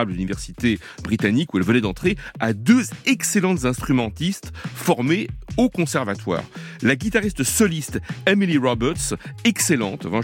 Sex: male